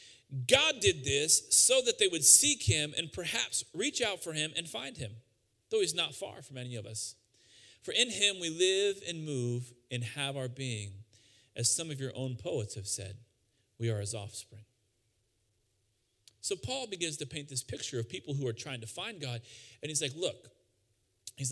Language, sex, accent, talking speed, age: English, male, American, 190 wpm, 40-59